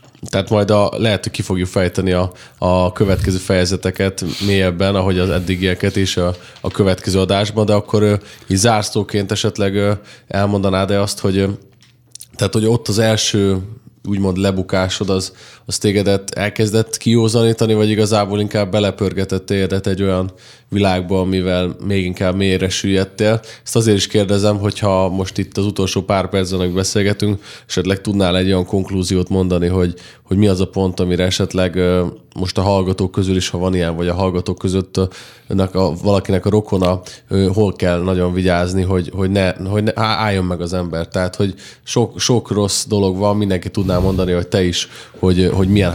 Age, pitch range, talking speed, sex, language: 20-39, 95-105 Hz, 165 wpm, male, Hungarian